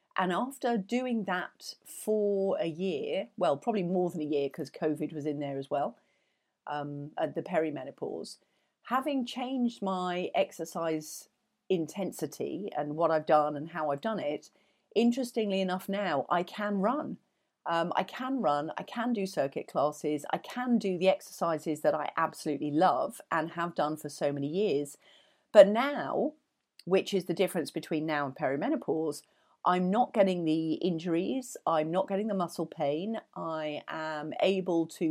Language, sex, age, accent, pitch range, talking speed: English, female, 40-59, British, 155-230 Hz, 160 wpm